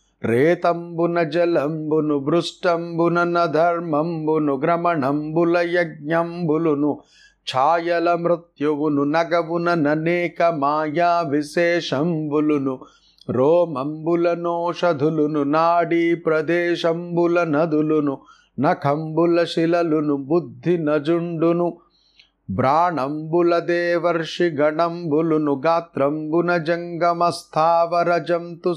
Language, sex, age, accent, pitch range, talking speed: Telugu, male, 30-49, native, 155-170 Hz, 55 wpm